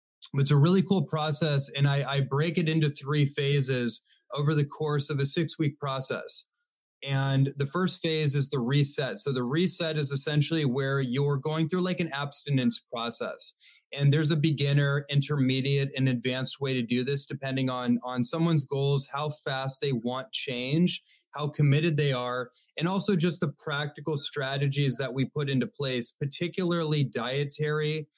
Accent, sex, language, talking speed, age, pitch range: American, male, English, 165 wpm, 30-49, 135-155 Hz